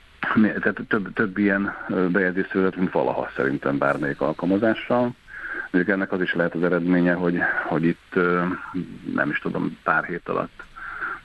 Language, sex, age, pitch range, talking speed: Hungarian, male, 50-69, 80-95 Hz, 145 wpm